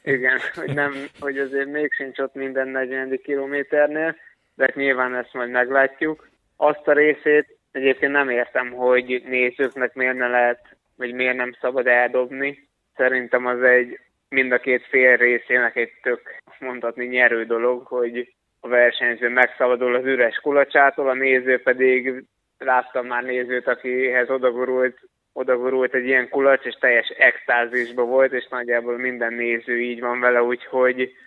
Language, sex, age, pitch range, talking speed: Hungarian, male, 20-39, 120-135 Hz, 145 wpm